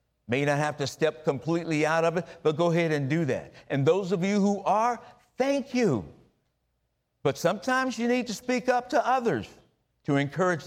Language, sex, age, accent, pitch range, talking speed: English, male, 50-69, American, 140-215 Hz, 190 wpm